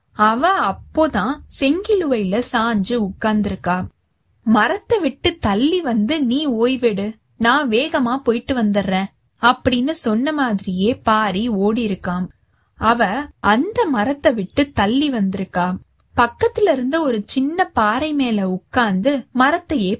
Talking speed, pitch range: 105 wpm, 205-280 Hz